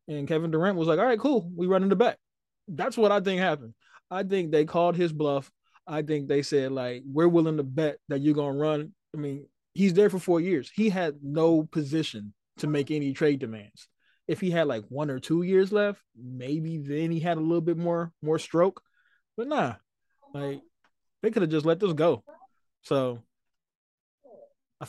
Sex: male